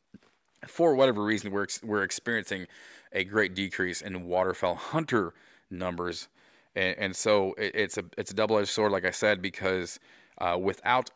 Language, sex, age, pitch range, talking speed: English, male, 30-49, 95-125 Hz, 160 wpm